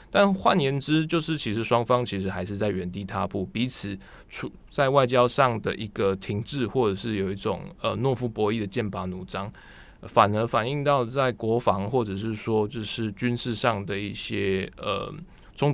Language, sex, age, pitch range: Chinese, male, 20-39, 100-120 Hz